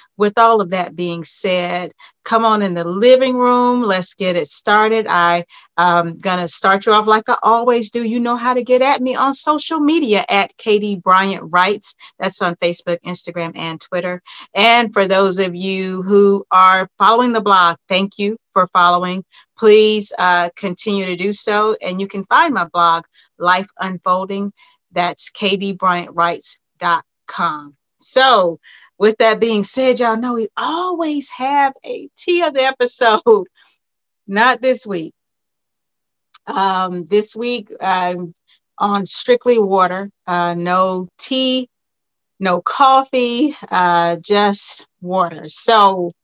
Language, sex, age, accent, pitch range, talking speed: English, female, 40-59, American, 180-230 Hz, 145 wpm